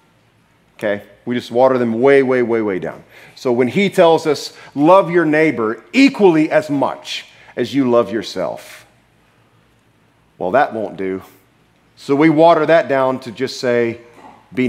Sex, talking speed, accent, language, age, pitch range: male, 155 wpm, American, English, 40-59, 120-170 Hz